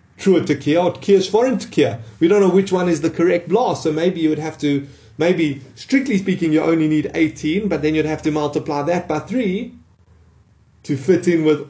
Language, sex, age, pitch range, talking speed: English, male, 30-49, 145-185 Hz, 205 wpm